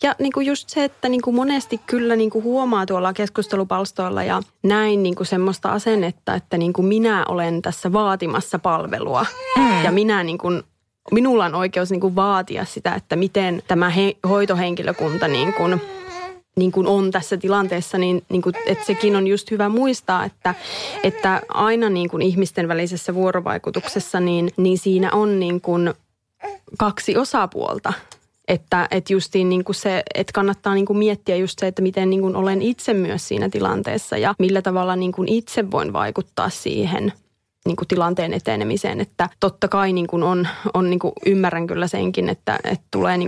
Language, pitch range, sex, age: Finnish, 180-210 Hz, female, 20-39